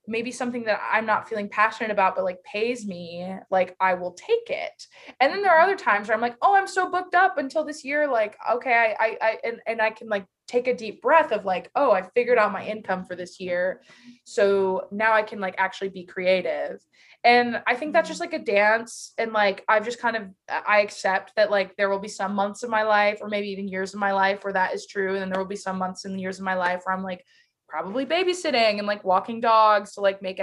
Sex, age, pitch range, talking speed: female, 20-39, 190-240 Hz, 250 wpm